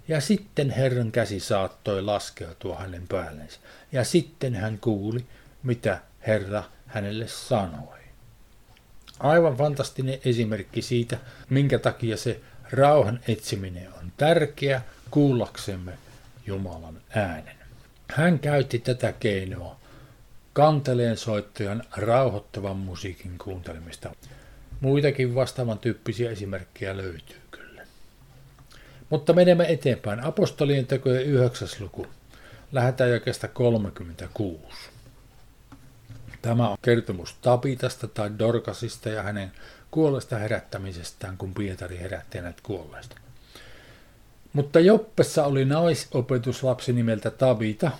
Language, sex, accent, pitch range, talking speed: Finnish, male, native, 105-135 Hz, 95 wpm